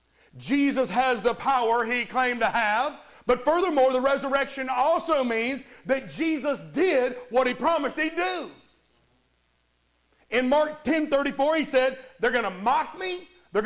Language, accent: English, American